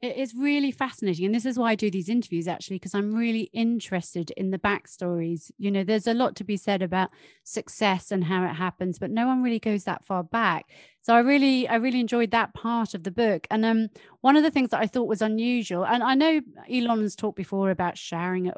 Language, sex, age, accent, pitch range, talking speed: English, female, 30-49, British, 195-250 Hz, 235 wpm